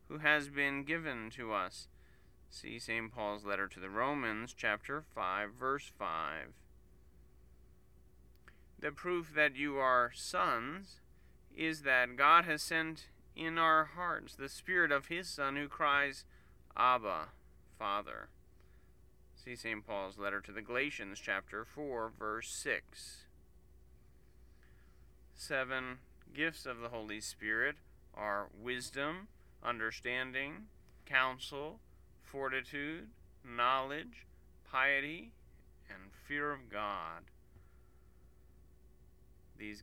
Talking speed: 105 wpm